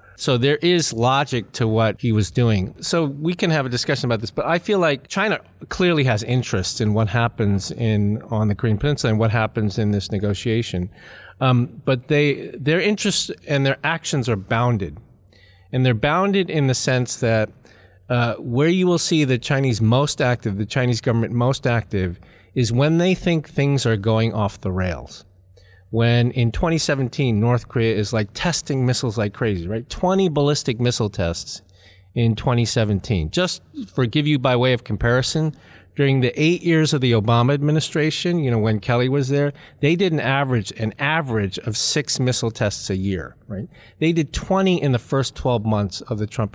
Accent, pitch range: American, 110-145 Hz